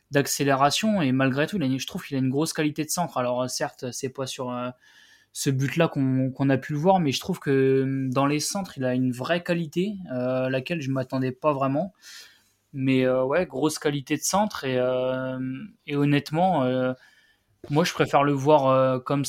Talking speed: 195 wpm